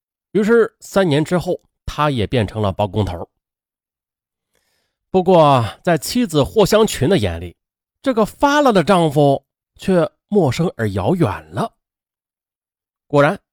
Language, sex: Chinese, male